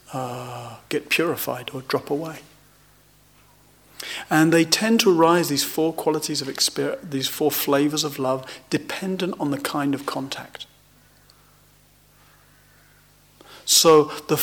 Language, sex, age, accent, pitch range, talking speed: English, male, 40-59, British, 140-195 Hz, 120 wpm